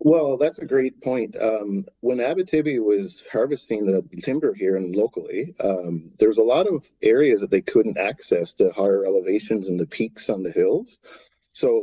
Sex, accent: male, American